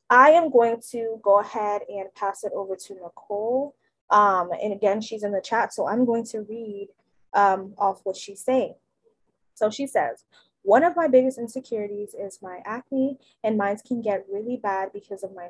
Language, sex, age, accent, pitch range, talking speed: English, female, 20-39, American, 195-230 Hz, 190 wpm